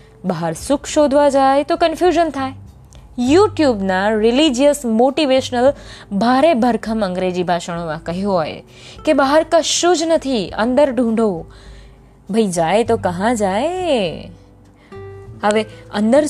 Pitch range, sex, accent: 200-280 Hz, female, native